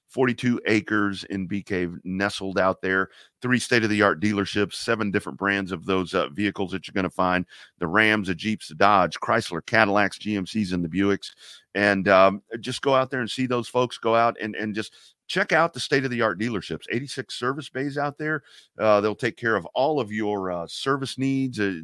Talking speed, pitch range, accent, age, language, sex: 195 wpm, 95-115 Hz, American, 40-59, English, male